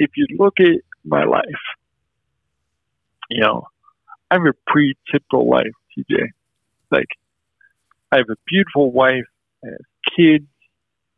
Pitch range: 120-165 Hz